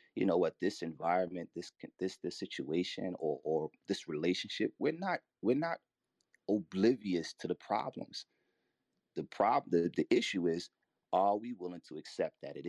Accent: American